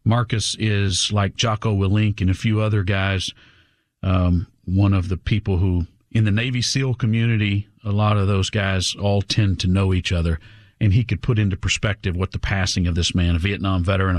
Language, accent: English, American